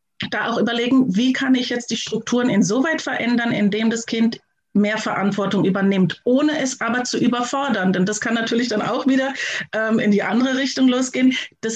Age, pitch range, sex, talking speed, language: 30-49, 195-245 Hz, female, 185 wpm, German